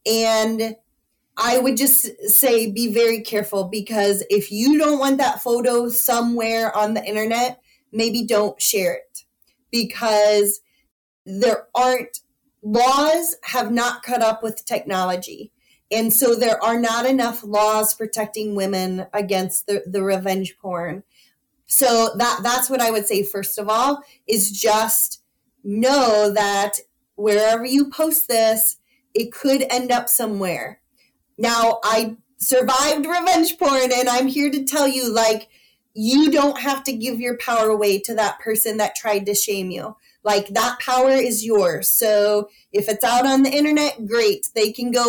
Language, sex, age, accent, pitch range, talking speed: English, female, 30-49, American, 210-260 Hz, 150 wpm